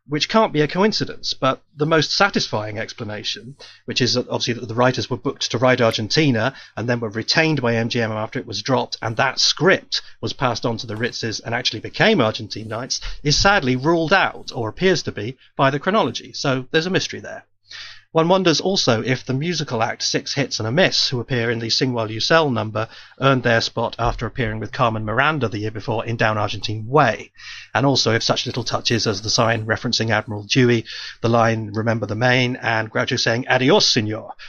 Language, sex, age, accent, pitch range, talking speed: English, male, 30-49, British, 115-135 Hz, 205 wpm